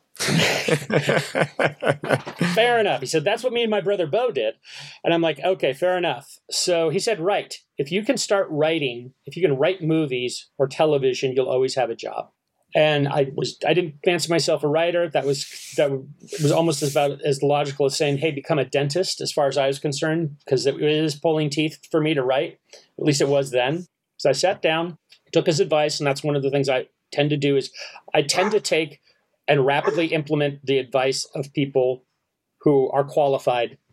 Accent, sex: American, male